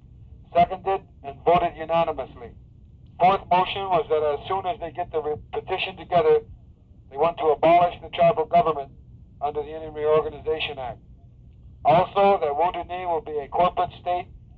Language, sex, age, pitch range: English, male, 50-69, 140-175 Hz